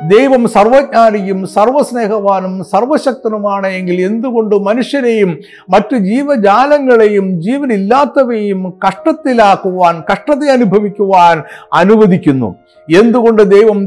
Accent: native